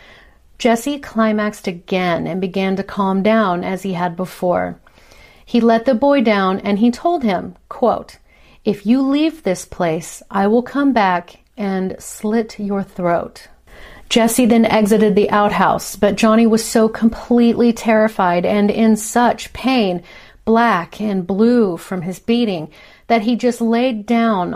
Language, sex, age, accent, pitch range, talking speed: English, female, 40-59, American, 190-235 Hz, 145 wpm